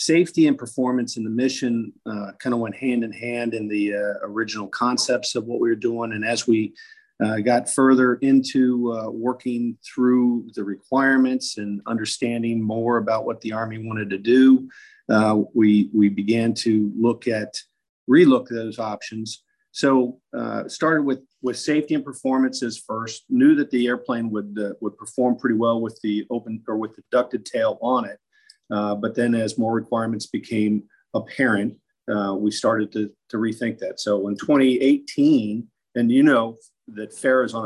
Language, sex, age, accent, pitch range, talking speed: English, male, 50-69, American, 110-125 Hz, 175 wpm